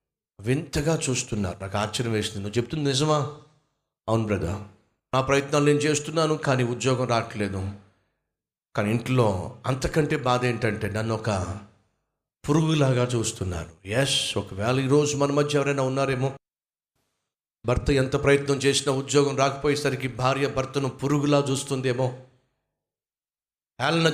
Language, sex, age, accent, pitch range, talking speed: Telugu, male, 50-69, native, 130-155 Hz, 105 wpm